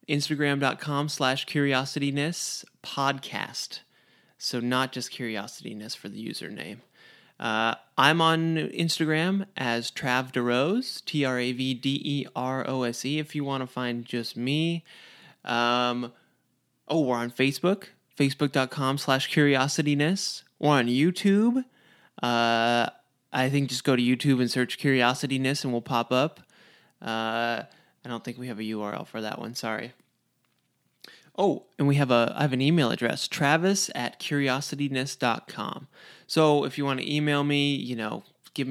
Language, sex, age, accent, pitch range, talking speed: English, male, 20-39, American, 125-145 Hz, 135 wpm